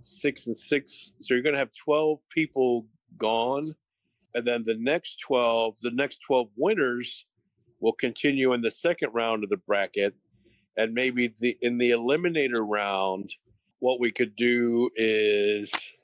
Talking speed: 155 wpm